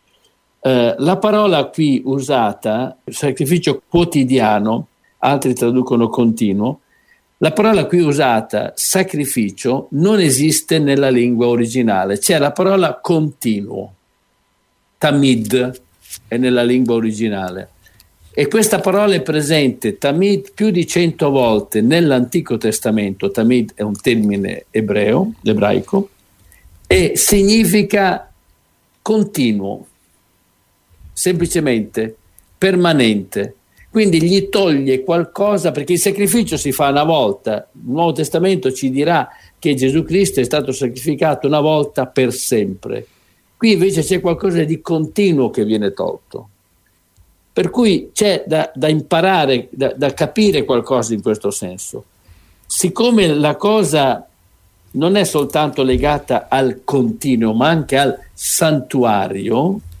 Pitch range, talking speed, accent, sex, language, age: 110-170 Hz, 115 wpm, native, male, Italian, 60-79